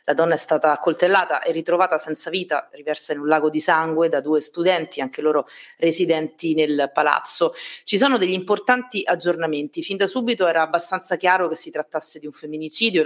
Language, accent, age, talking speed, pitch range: Italian, native, 30-49, 185 wpm, 150-185 Hz